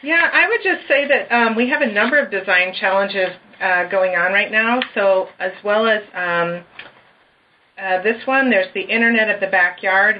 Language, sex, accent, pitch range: English, female, American, 180-215 Hz